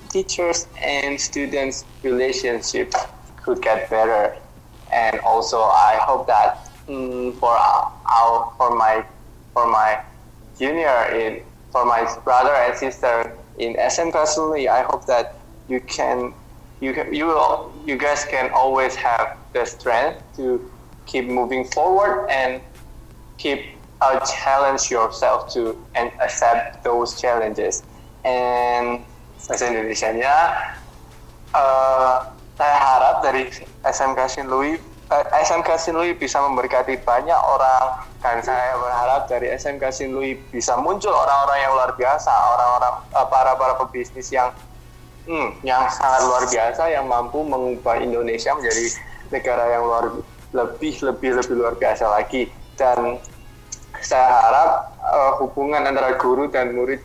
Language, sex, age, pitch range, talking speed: Indonesian, male, 20-39, 120-135 Hz, 125 wpm